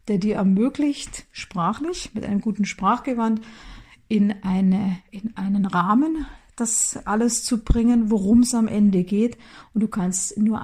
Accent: German